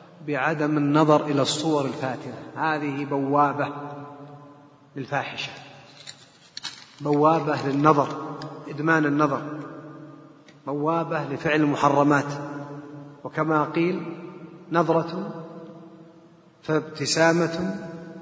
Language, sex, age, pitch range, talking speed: Arabic, male, 40-59, 145-170 Hz, 65 wpm